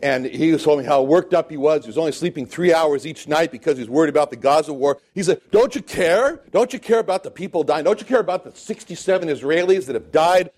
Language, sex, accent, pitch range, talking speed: English, male, American, 155-215 Hz, 270 wpm